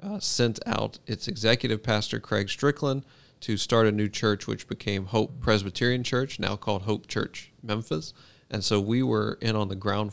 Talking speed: 185 wpm